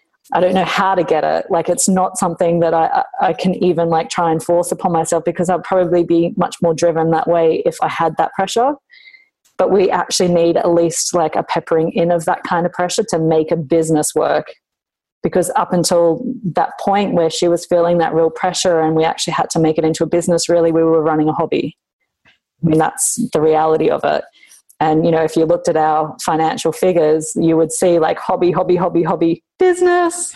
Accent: Australian